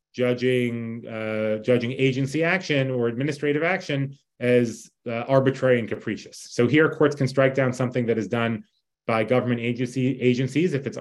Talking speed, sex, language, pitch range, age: 160 wpm, male, English, 115-140 Hz, 30-49